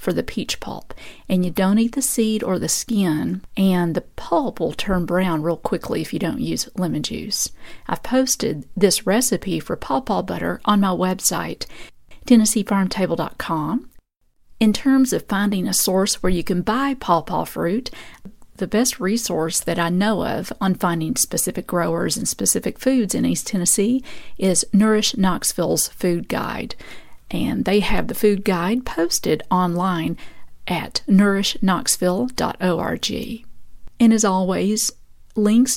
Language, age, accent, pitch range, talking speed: English, 50-69, American, 185-230 Hz, 145 wpm